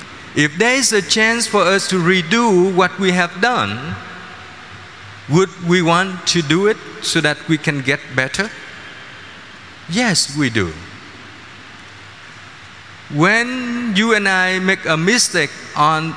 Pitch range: 140-195 Hz